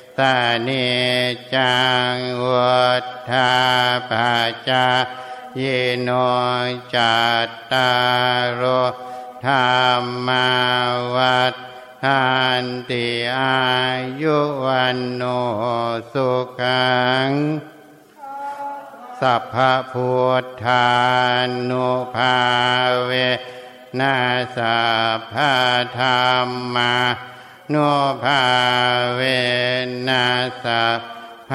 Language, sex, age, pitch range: Thai, male, 60-79, 125-130 Hz